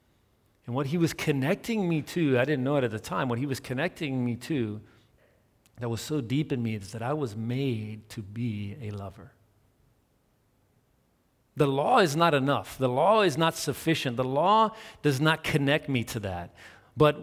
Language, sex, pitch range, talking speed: English, male, 105-140 Hz, 190 wpm